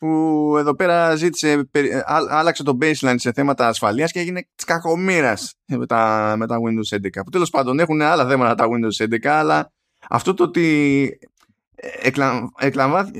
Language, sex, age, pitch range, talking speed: Greek, male, 20-39, 110-150 Hz, 150 wpm